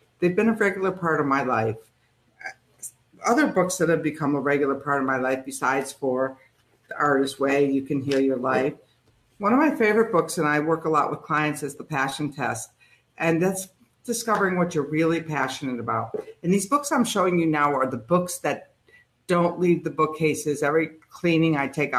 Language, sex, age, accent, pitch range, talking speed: English, female, 50-69, American, 135-165 Hz, 195 wpm